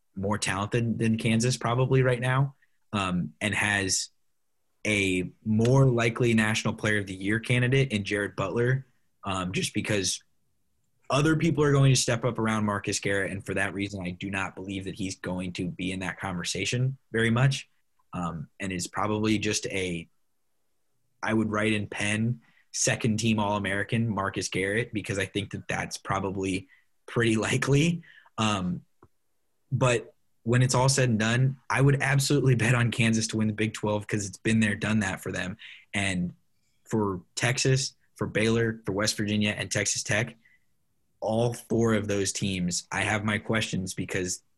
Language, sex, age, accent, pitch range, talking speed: English, male, 20-39, American, 95-115 Hz, 170 wpm